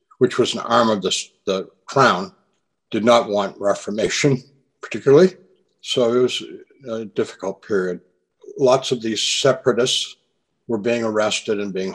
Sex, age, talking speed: male, 60-79, 140 wpm